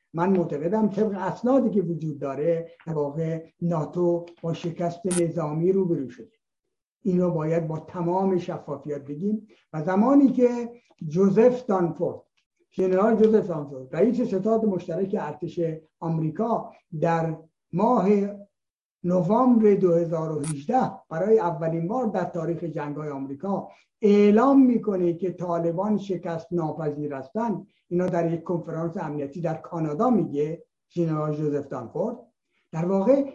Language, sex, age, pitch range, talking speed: Persian, male, 60-79, 160-210 Hz, 115 wpm